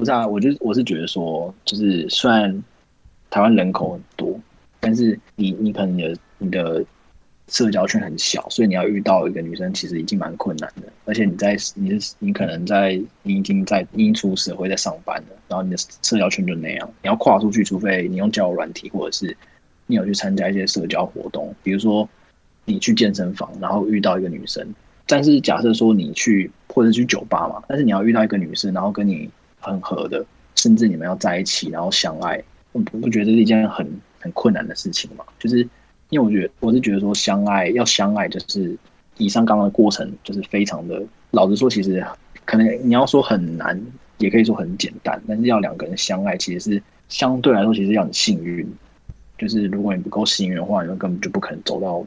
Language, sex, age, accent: Chinese, male, 20-39, native